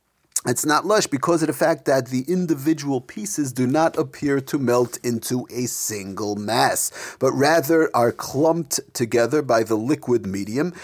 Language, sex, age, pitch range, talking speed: English, male, 40-59, 125-165 Hz, 160 wpm